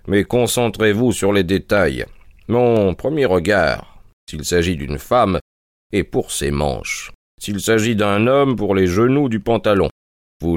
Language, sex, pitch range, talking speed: French, male, 80-105 Hz, 150 wpm